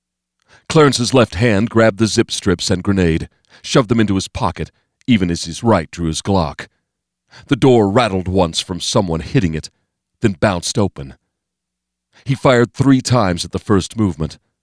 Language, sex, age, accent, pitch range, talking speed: English, male, 40-59, American, 80-110 Hz, 165 wpm